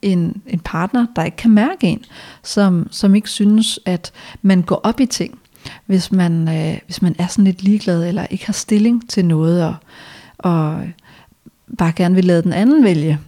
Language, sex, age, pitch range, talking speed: Danish, female, 40-59, 175-215 Hz, 185 wpm